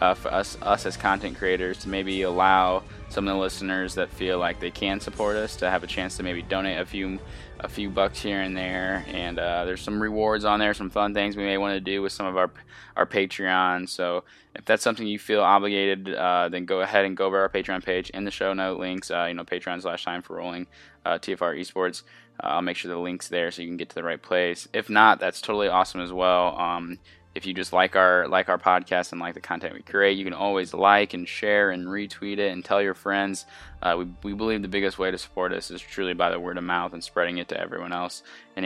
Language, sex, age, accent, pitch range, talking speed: English, male, 10-29, American, 90-100 Hz, 255 wpm